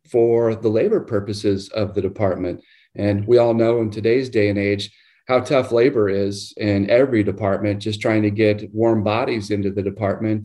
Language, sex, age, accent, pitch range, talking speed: English, male, 40-59, American, 105-125 Hz, 185 wpm